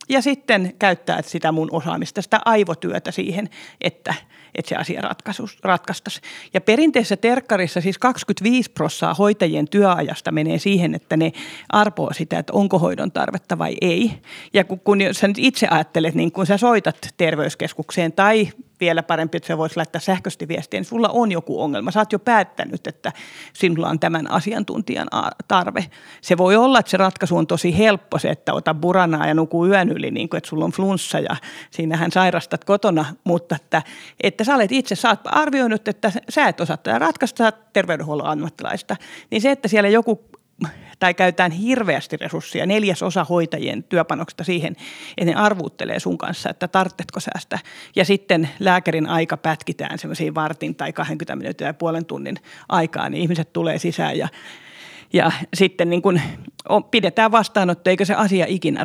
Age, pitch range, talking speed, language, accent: 40-59, 165-210 Hz, 165 wpm, Finnish, native